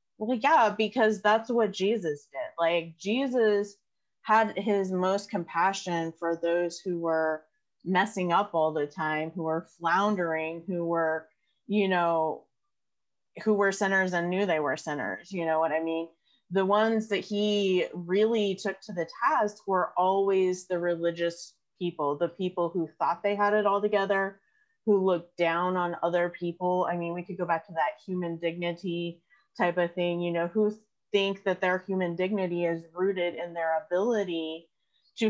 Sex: female